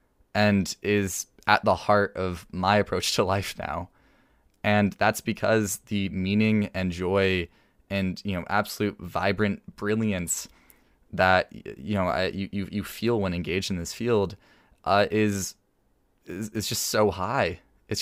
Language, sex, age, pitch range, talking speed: English, male, 20-39, 90-100 Hz, 145 wpm